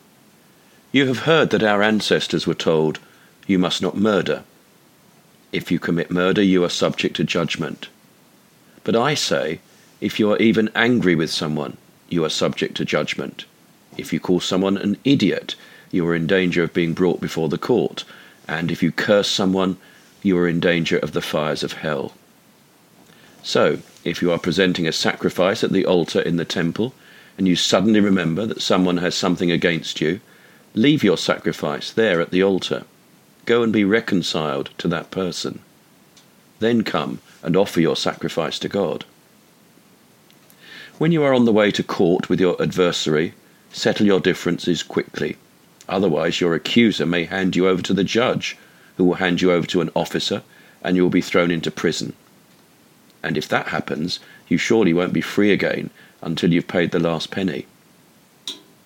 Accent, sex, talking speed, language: British, male, 170 wpm, English